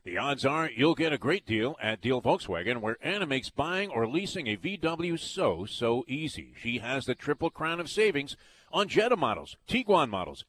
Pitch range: 130-180 Hz